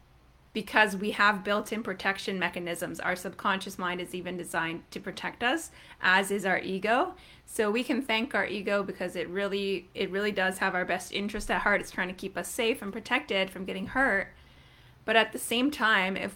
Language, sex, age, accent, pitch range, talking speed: English, female, 20-39, American, 180-210 Hz, 200 wpm